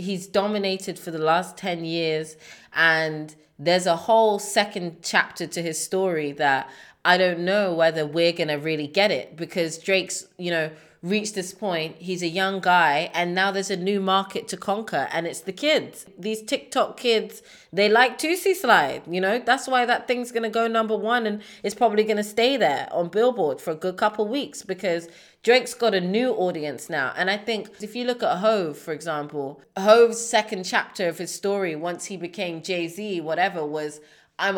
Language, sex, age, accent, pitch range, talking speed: English, female, 20-39, British, 165-215 Hz, 195 wpm